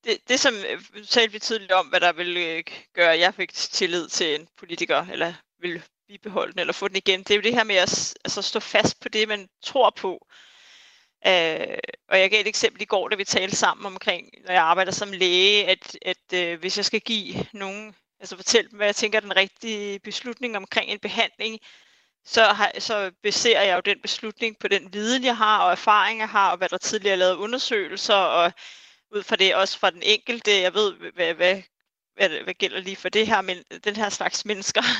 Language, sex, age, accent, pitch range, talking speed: Danish, female, 30-49, native, 190-225 Hz, 210 wpm